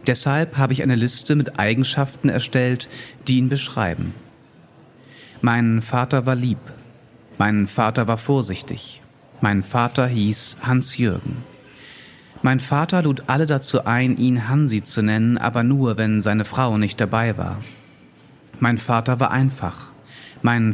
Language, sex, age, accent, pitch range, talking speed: German, male, 40-59, German, 115-135 Hz, 135 wpm